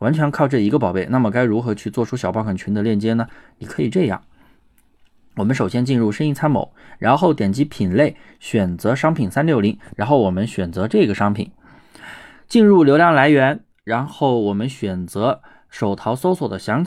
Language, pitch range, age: Chinese, 105-135 Hz, 20-39